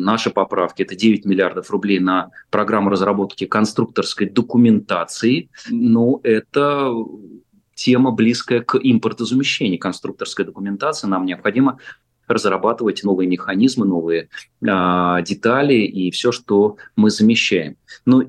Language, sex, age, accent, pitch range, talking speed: Russian, male, 30-49, native, 95-120 Hz, 110 wpm